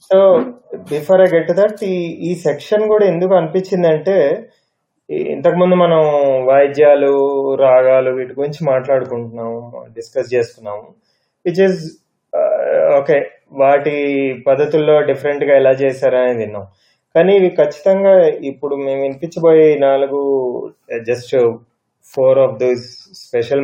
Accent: native